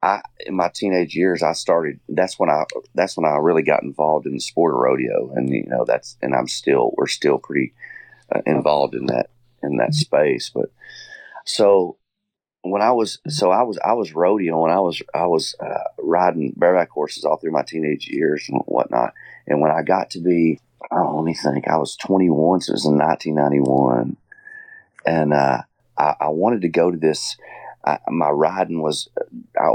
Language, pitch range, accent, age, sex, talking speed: English, 75-95 Hz, American, 40-59, male, 195 wpm